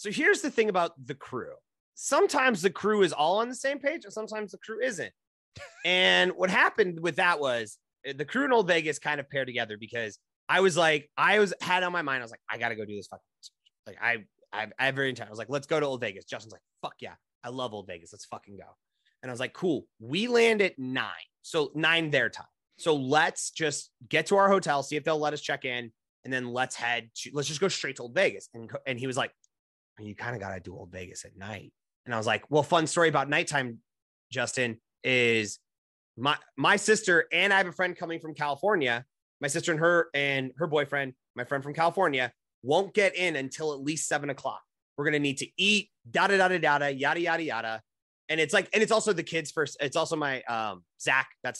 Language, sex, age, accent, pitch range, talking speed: English, male, 30-49, American, 125-190 Hz, 240 wpm